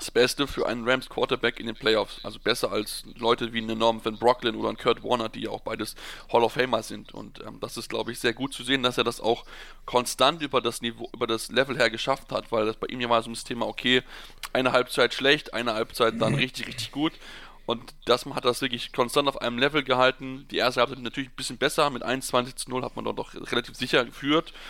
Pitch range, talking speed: 115-135 Hz, 250 wpm